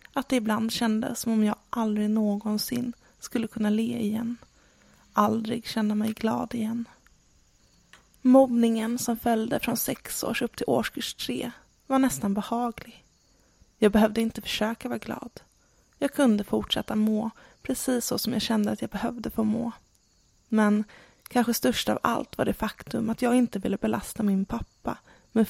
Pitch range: 210-235 Hz